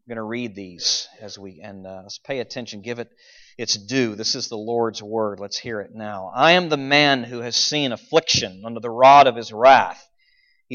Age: 40-59